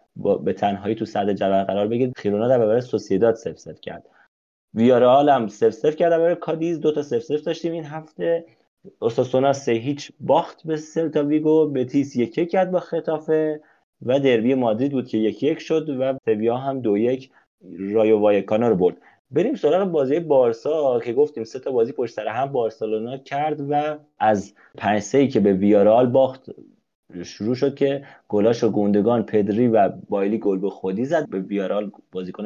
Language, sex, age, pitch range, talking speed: Persian, male, 30-49, 105-150 Hz, 165 wpm